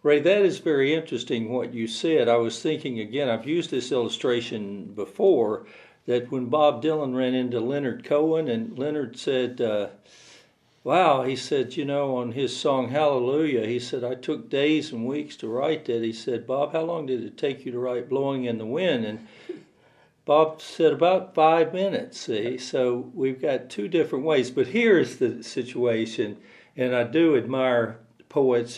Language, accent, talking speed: English, American, 175 wpm